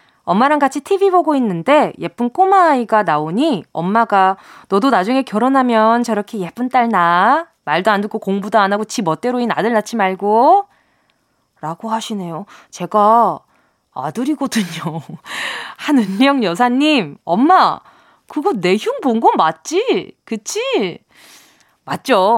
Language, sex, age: Korean, female, 20-39